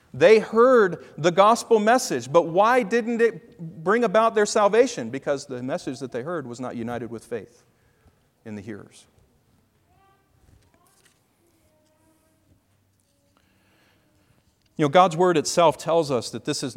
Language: English